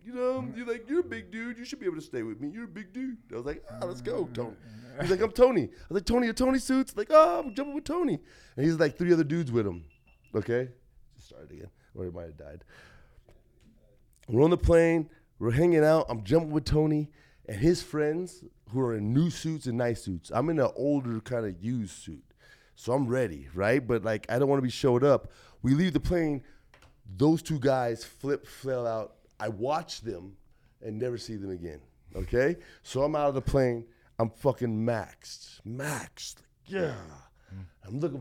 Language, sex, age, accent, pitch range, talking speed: English, male, 30-49, American, 115-185 Hz, 215 wpm